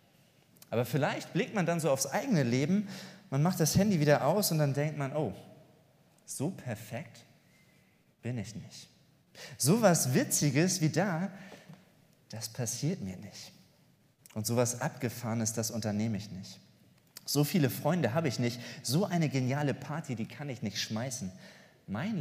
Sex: male